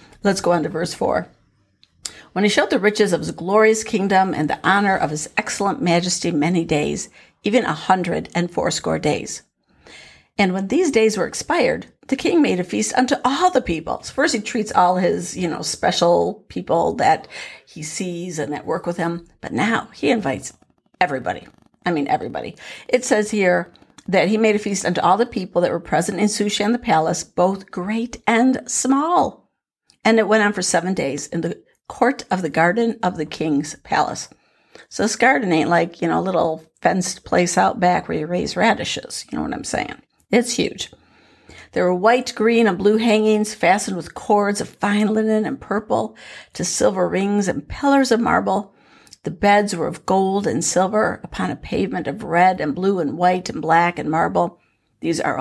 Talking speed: 195 wpm